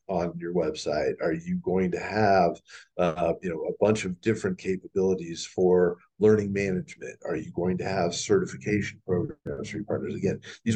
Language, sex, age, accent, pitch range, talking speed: English, male, 40-59, American, 90-110 Hz, 175 wpm